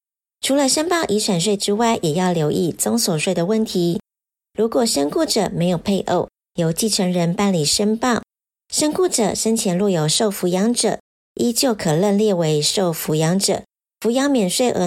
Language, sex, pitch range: Chinese, male, 180-230 Hz